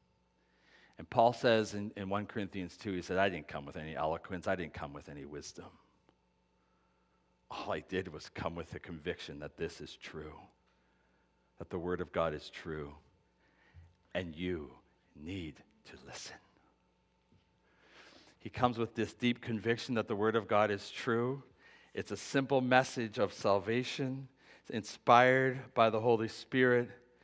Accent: American